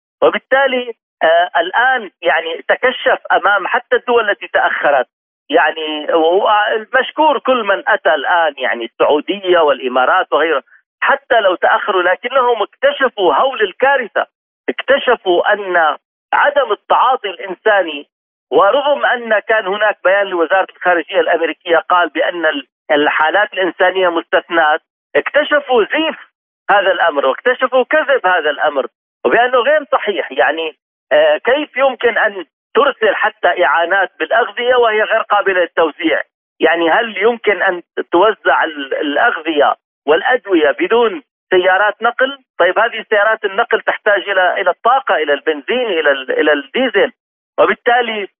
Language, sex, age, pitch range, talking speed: Arabic, male, 40-59, 180-255 Hz, 115 wpm